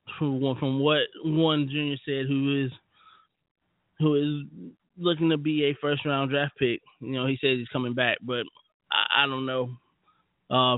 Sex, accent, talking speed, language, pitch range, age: male, American, 165 wpm, English, 135-170 Hz, 20-39